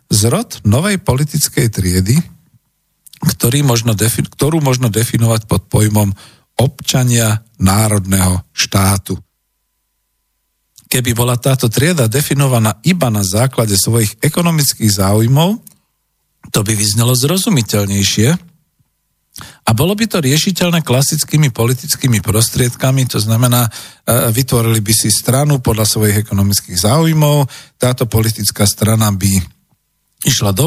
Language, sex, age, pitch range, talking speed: Slovak, male, 50-69, 105-145 Hz, 105 wpm